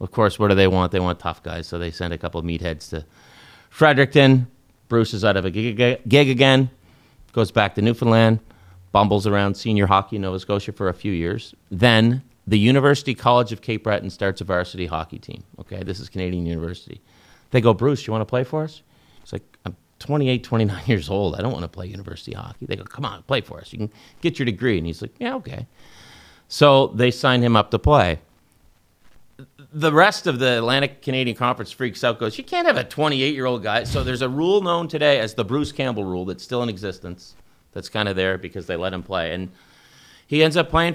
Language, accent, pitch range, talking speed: English, American, 95-130 Hz, 220 wpm